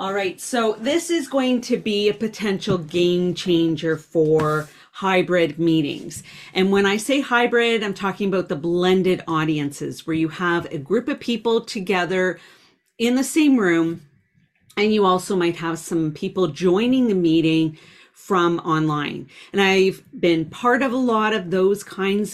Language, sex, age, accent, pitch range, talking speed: English, female, 40-59, American, 170-220 Hz, 160 wpm